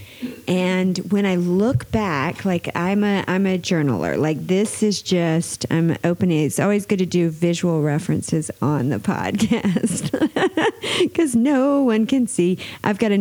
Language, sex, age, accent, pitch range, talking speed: English, female, 40-59, American, 165-200 Hz, 160 wpm